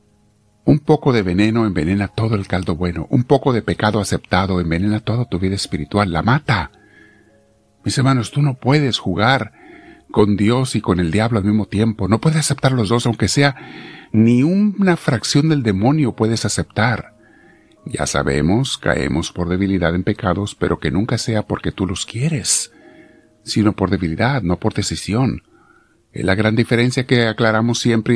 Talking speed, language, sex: 165 wpm, Spanish, male